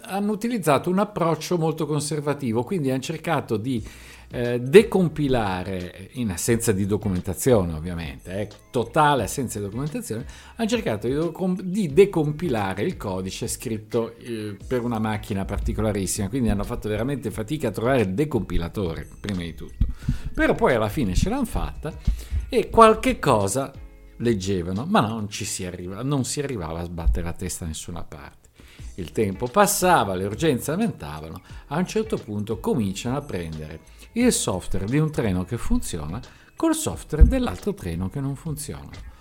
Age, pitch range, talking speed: 50-69, 95-150 Hz, 155 wpm